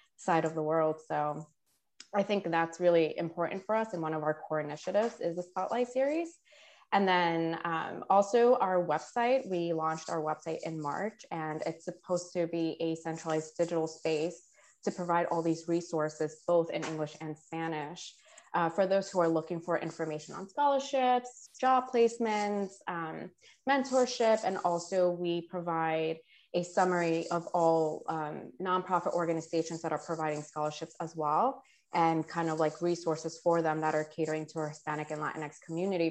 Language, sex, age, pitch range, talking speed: English, female, 20-39, 155-180 Hz, 165 wpm